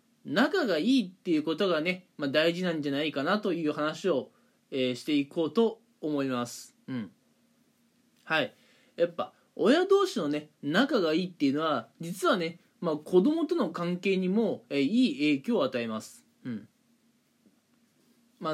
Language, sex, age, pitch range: Japanese, male, 20-39, 150-240 Hz